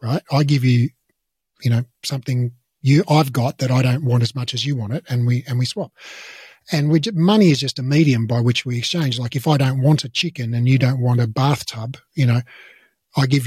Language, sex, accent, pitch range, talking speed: English, male, Australian, 125-165 Hz, 235 wpm